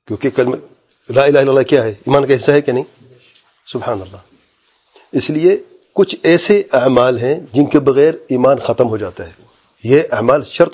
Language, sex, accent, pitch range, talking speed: English, male, Indian, 120-160 Hz, 180 wpm